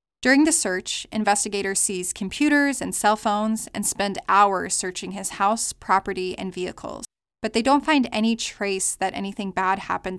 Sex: female